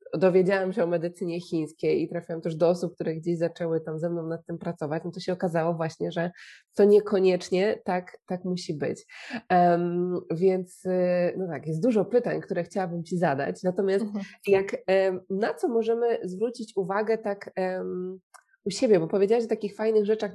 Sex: female